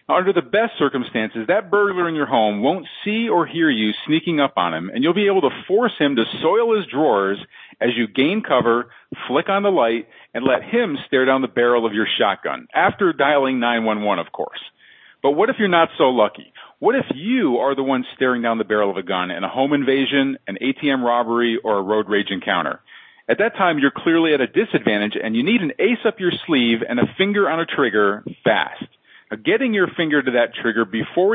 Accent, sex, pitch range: American, male, 115-175 Hz